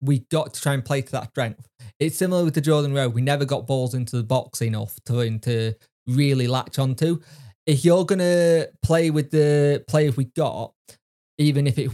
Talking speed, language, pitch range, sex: 200 wpm, English, 130-160 Hz, male